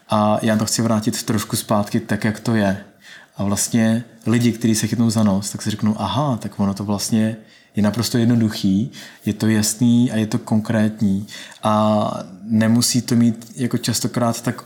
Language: Czech